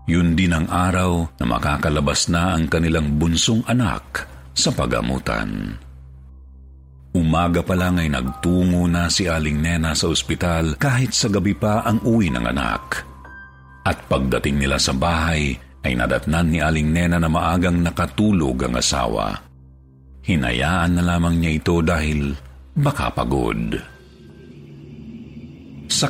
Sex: male